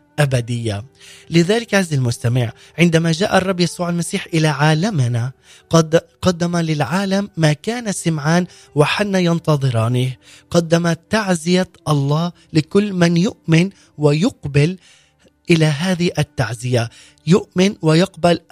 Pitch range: 150-185 Hz